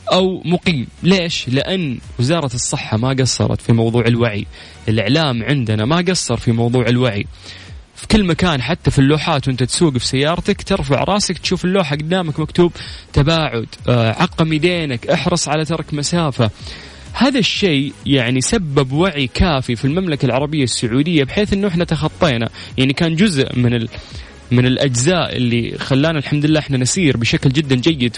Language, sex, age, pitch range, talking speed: Arabic, male, 20-39, 115-155 Hz, 150 wpm